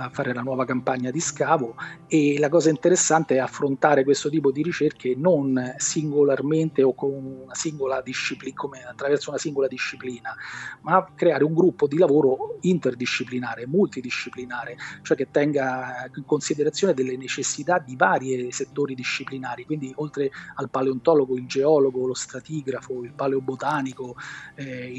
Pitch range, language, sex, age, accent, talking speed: 135-160 Hz, Italian, male, 30-49, native, 140 wpm